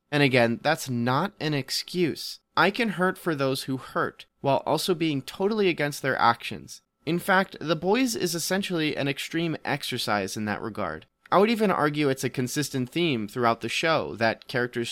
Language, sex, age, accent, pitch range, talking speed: English, male, 30-49, American, 115-155 Hz, 180 wpm